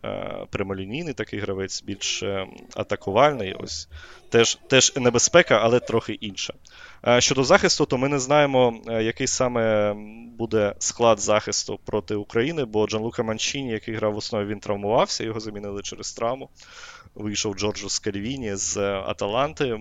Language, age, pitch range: Ukrainian, 20-39, 100-120 Hz